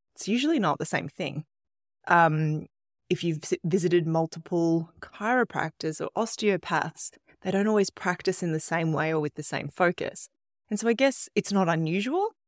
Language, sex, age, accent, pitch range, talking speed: English, female, 20-39, Australian, 150-195 Hz, 165 wpm